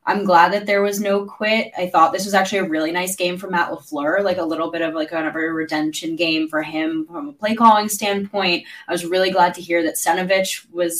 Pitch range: 170-215 Hz